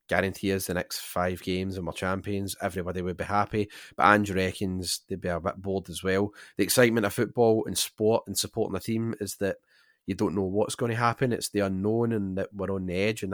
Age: 30-49